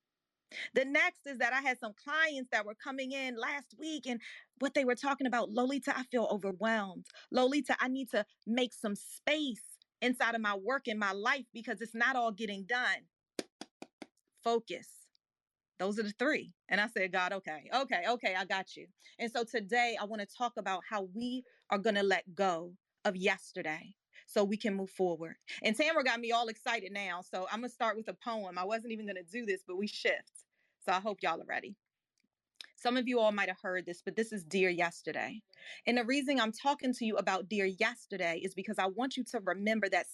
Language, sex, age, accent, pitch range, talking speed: English, female, 30-49, American, 195-250 Hz, 210 wpm